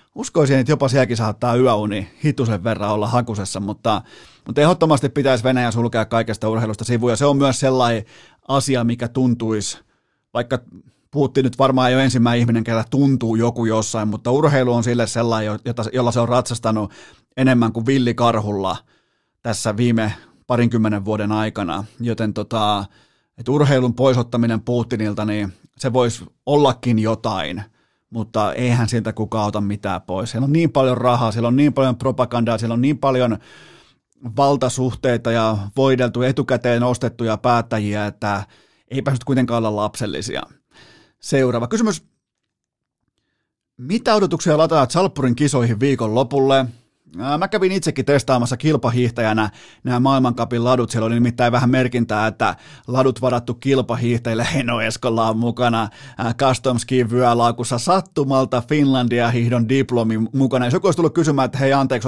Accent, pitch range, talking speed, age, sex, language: native, 115-135 Hz, 135 wpm, 30-49, male, Finnish